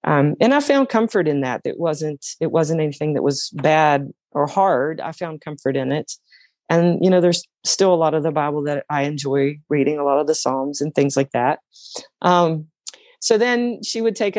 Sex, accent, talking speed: female, American, 215 wpm